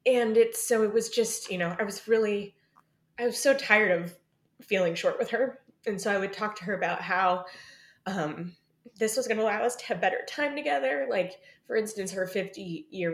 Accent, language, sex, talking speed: American, English, female, 215 wpm